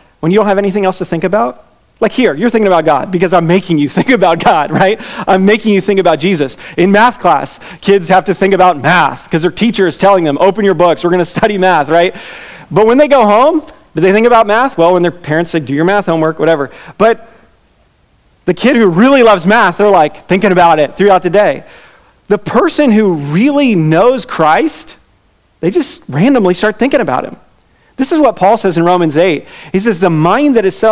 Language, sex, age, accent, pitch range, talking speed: English, male, 30-49, American, 175-225 Hz, 225 wpm